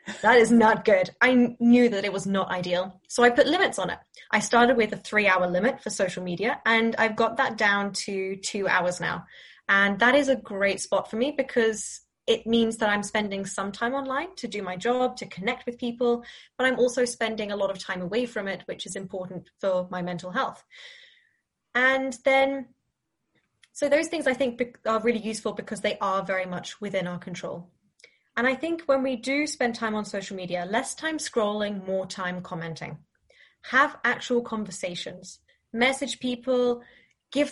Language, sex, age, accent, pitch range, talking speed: English, female, 10-29, British, 195-250 Hz, 190 wpm